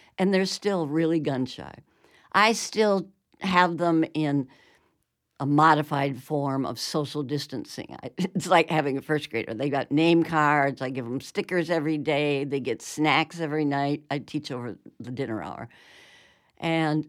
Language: English